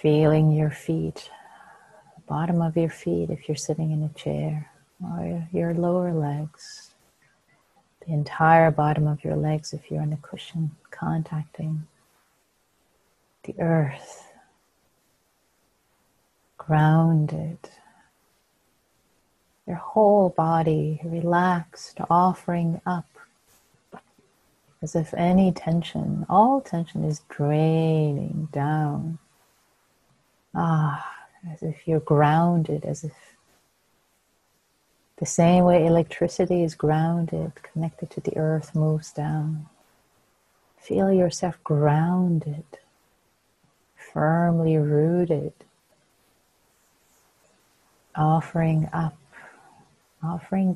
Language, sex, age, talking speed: English, female, 30-49, 90 wpm